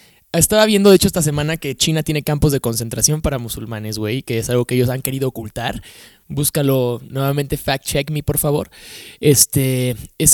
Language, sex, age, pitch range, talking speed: Spanish, male, 20-39, 125-150 Hz, 180 wpm